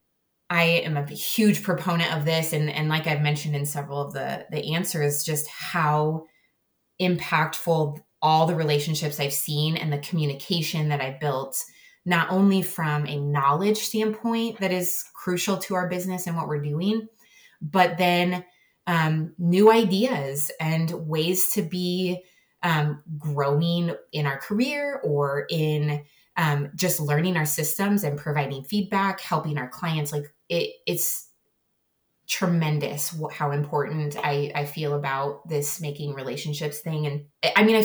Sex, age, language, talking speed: female, 20-39, English, 150 wpm